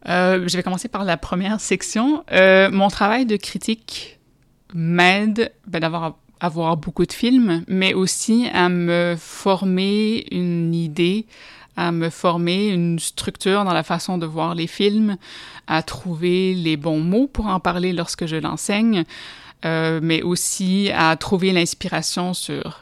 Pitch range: 165-195 Hz